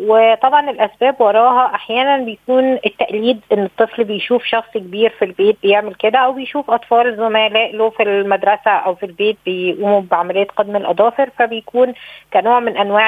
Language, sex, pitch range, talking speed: Arabic, female, 210-250 Hz, 150 wpm